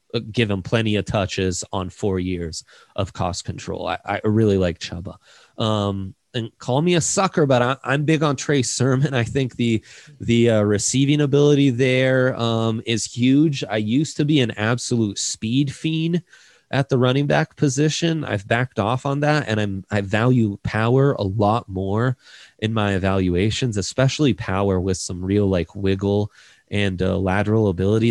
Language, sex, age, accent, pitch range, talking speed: English, male, 20-39, American, 100-130 Hz, 170 wpm